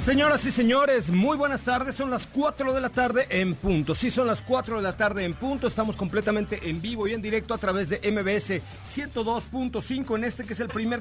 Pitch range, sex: 155-220 Hz, male